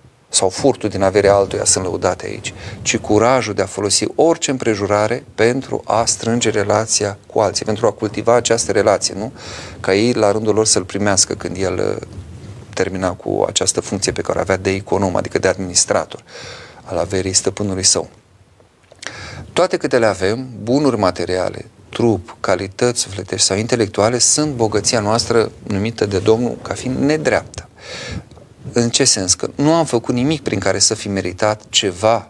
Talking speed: 160 wpm